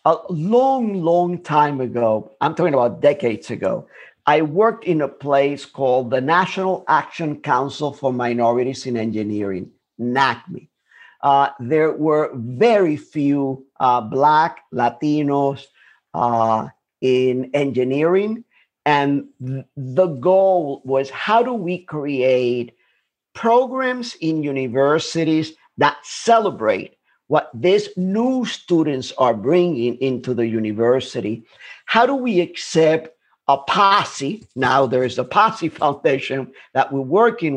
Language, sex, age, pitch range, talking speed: English, male, 50-69, 130-195 Hz, 115 wpm